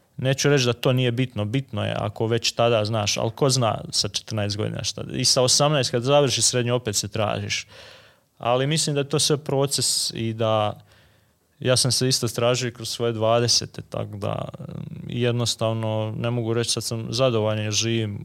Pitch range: 110-130 Hz